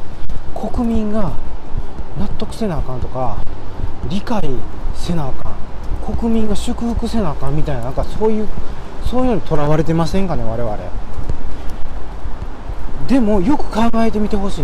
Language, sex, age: Japanese, male, 40-59